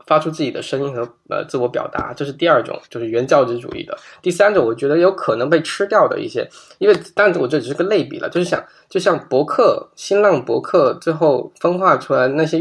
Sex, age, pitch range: male, 10-29, 135-175 Hz